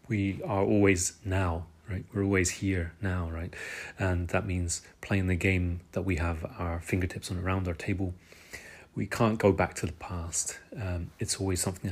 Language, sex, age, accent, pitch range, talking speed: English, male, 30-49, British, 90-110 Hz, 180 wpm